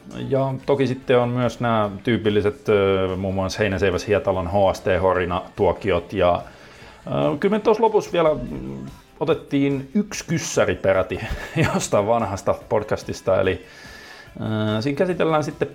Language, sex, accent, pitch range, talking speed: Finnish, male, native, 100-130 Hz, 100 wpm